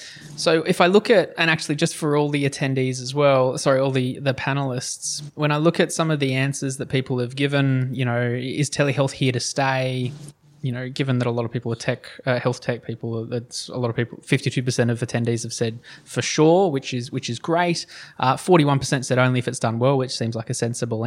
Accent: Australian